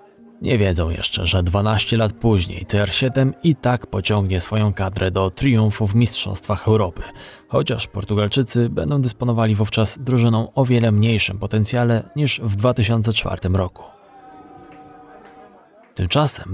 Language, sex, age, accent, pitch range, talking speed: Polish, male, 20-39, native, 105-130 Hz, 120 wpm